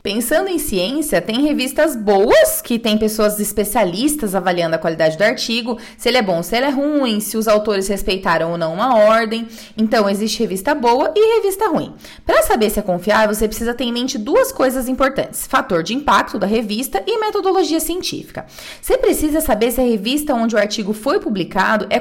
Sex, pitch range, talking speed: female, 220-315 Hz, 195 wpm